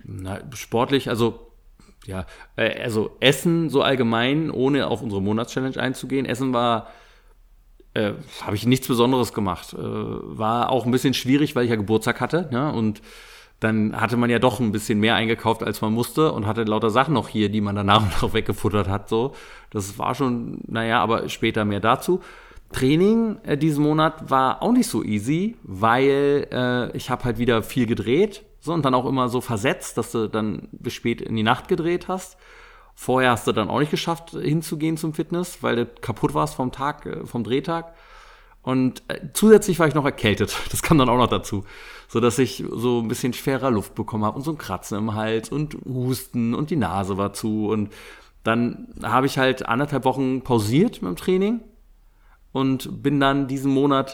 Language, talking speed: German, 190 wpm